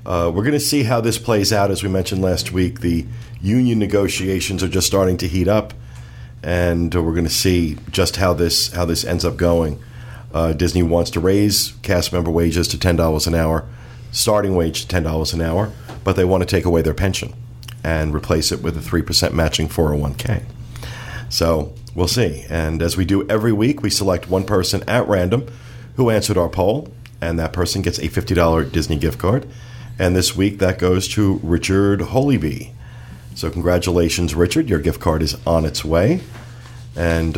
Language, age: English, 40-59